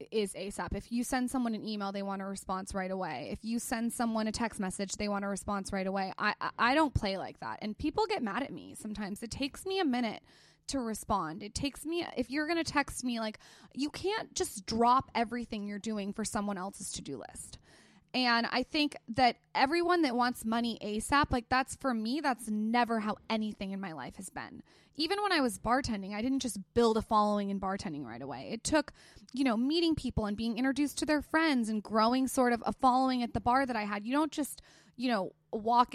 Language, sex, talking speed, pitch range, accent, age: English, female, 230 wpm, 210-265 Hz, American, 20-39